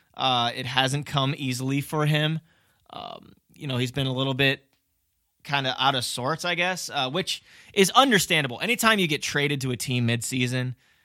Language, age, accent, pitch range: English, 20-39, American, 125-145 Hz